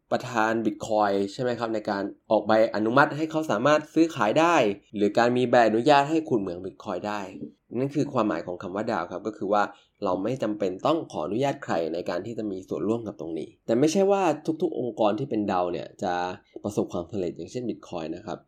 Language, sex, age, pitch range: Thai, male, 20-39, 100-120 Hz